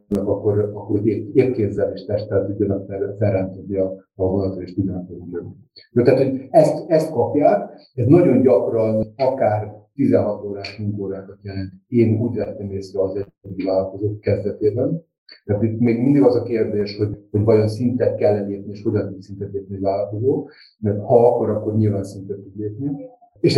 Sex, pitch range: male, 100-120 Hz